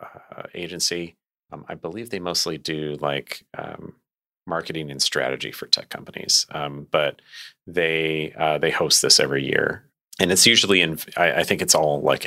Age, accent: 30-49, American